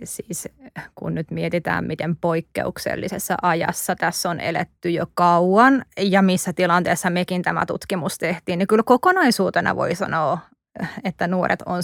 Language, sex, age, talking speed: Finnish, female, 20-39, 135 wpm